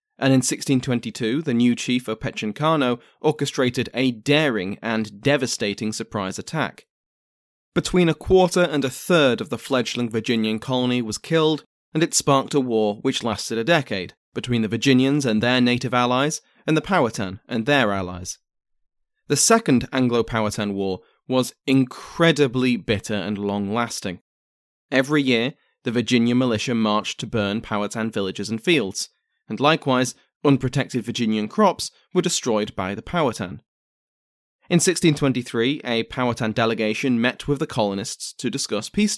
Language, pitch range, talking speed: English, 110-145 Hz, 140 wpm